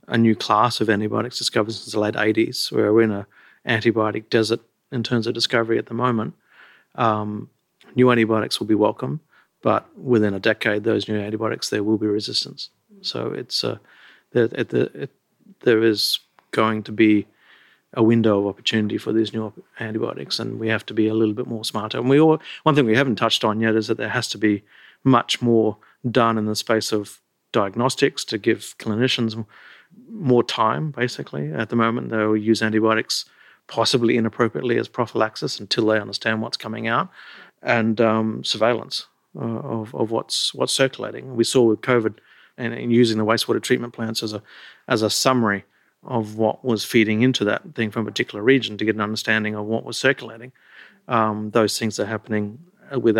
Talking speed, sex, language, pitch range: 185 wpm, male, English, 110-120 Hz